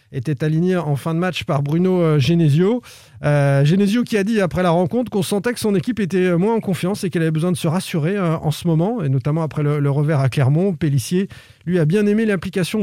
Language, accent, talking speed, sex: French, French, 240 wpm, male